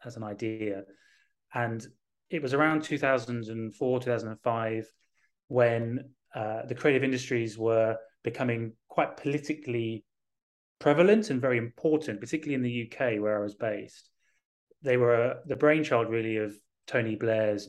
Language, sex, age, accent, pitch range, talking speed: English, male, 30-49, British, 110-140 Hz, 130 wpm